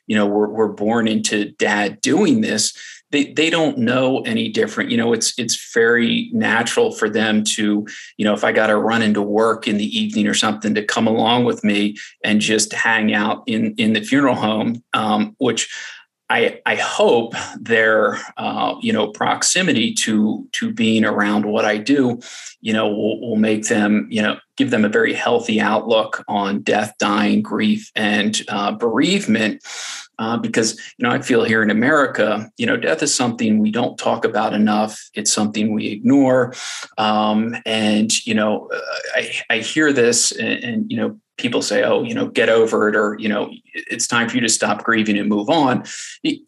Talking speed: 190 wpm